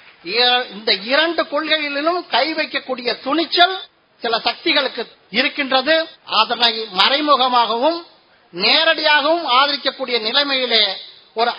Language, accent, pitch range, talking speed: Tamil, native, 240-310 Hz, 80 wpm